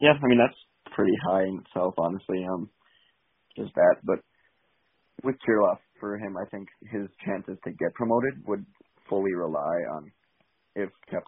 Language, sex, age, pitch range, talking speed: English, male, 20-39, 95-110 Hz, 160 wpm